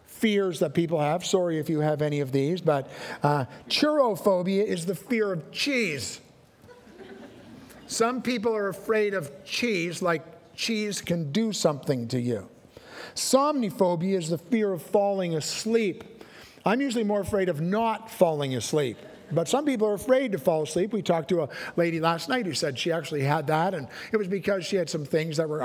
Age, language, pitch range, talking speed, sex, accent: 50-69, English, 150-200 Hz, 180 wpm, male, American